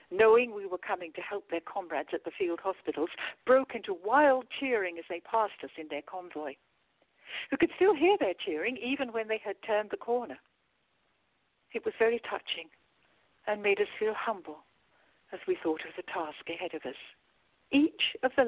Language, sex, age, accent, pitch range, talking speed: English, female, 60-79, British, 175-255 Hz, 185 wpm